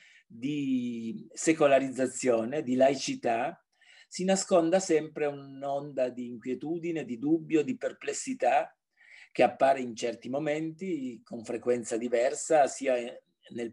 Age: 40-59